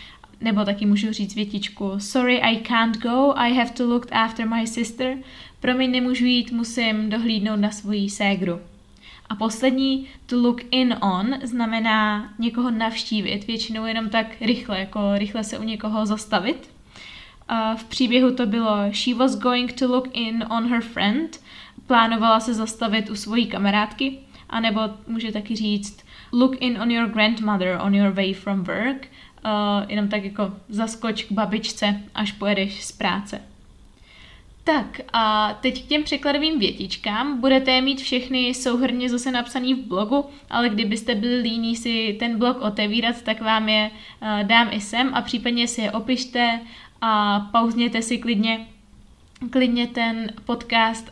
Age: 20-39